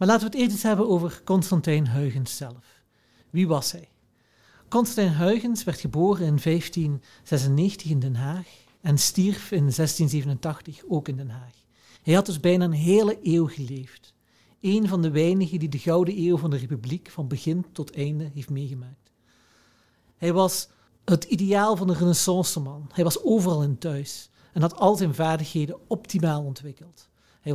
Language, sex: Dutch, male